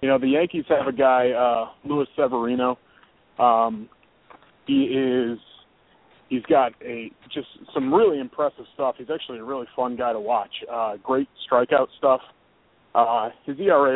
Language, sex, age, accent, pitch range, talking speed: English, male, 30-49, American, 115-135 Hz, 155 wpm